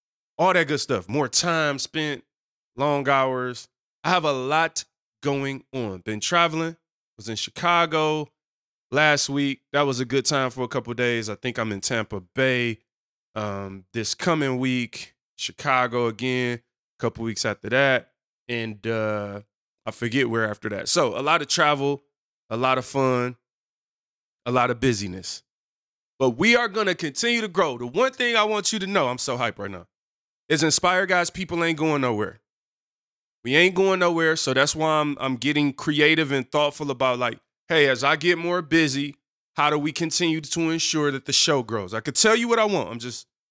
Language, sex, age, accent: English, male, 20-39, American